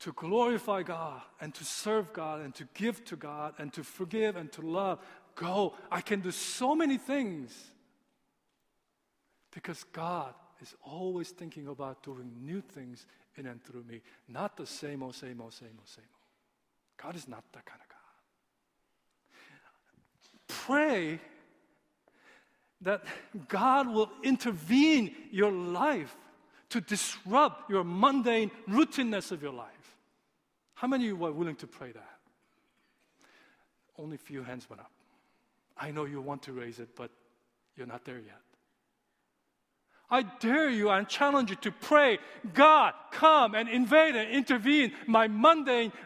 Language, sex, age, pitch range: Korean, male, 50-69, 155-250 Hz